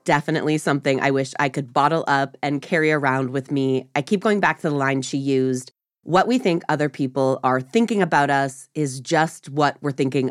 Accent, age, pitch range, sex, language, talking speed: American, 20-39, 135-175 Hz, female, English, 210 wpm